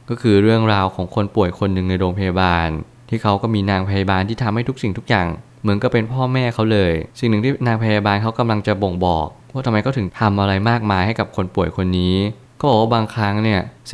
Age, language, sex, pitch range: 20-39, Thai, male, 95-115 Hz